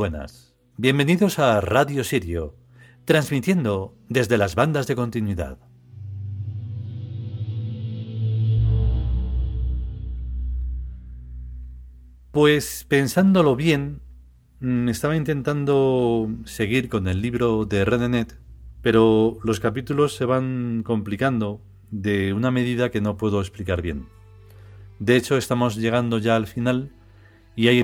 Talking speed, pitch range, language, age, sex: 95 wpm, 100-125 Hz, Spanish, 40-59, male